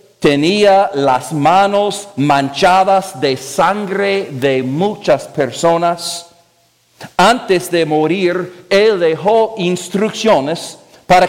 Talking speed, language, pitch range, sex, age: 85 wpm, English, 150-220 Hz, male, 50-69